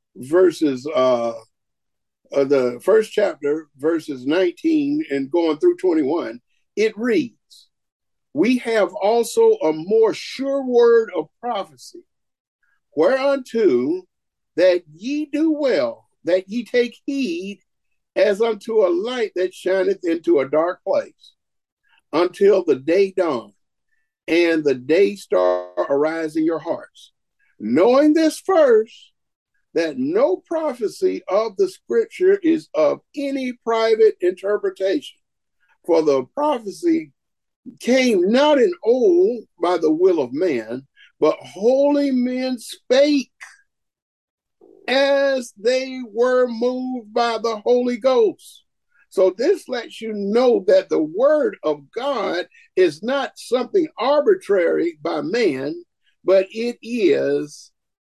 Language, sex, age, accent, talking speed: English, male, 50-69, American, 115 wpm